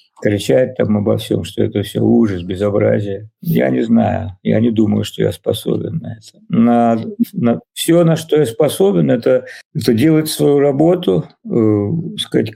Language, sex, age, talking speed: Russian, male, 50-69, 160 wpm